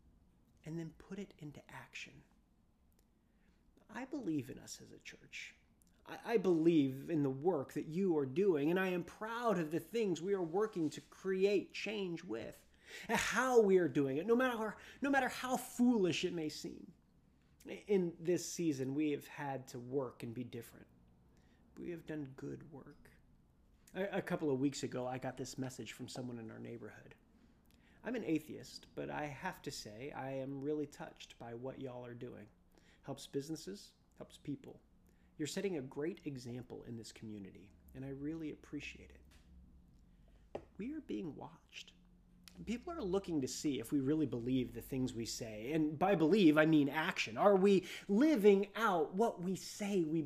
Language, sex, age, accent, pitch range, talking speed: English, male, 30-49, American, 130-190 Hz, 180 wpm